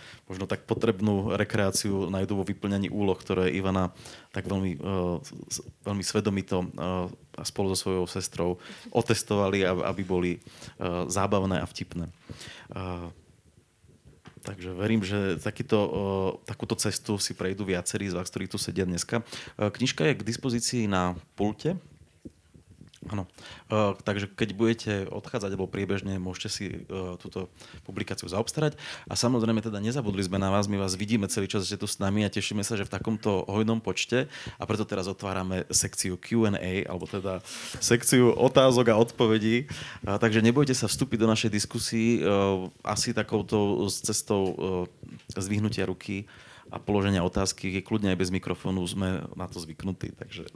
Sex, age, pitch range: male, 30-49, 95-115 Hz